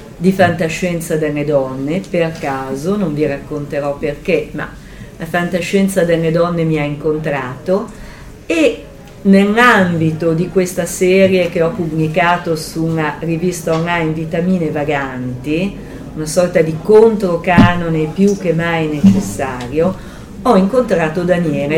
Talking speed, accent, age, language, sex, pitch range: 120 wpm, native, 40-59, Italian, female, 160-215 Hz